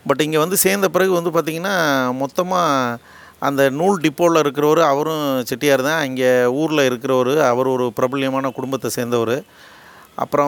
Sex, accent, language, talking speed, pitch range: male, native, Tamil, 135 wpm, 130-160 Hz